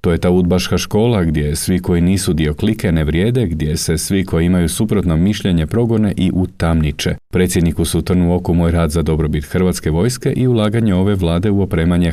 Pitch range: 85-95 Hz